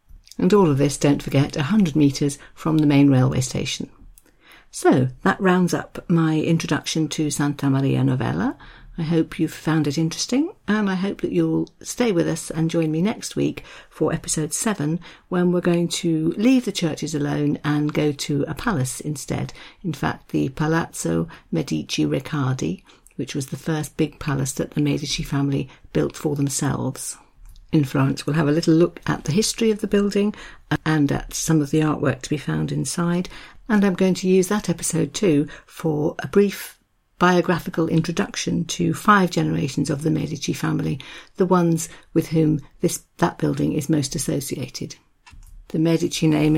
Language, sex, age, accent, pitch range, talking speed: English, female, 50-69, British, 145-170 Hz, 175 wpm